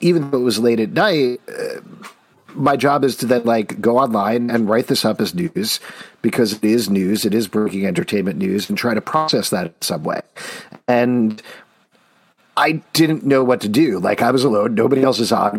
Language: English